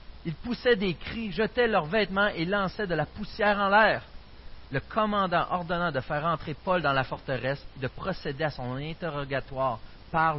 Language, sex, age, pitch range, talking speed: French, male, 40-59, 125-175 Hz, 175 wpm